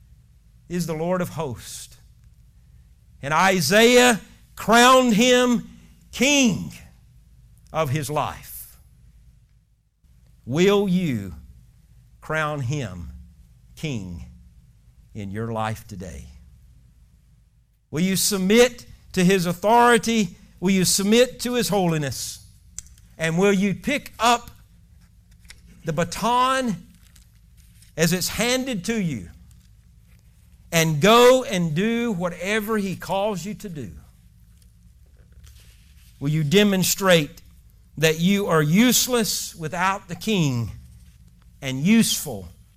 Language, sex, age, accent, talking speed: English, male, 50-69, American, 95 wpm